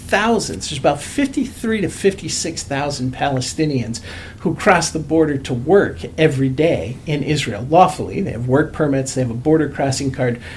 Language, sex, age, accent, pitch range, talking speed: English, male, 50-69, American, 125-155 Hz, 160 wpm